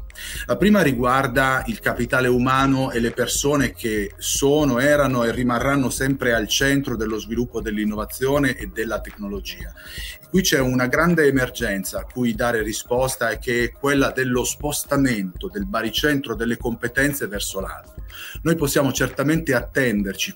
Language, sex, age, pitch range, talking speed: Italian, male, 30-49, 115-145 Hz, 140 wpm